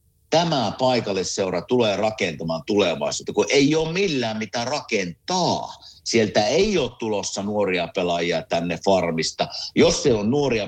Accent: native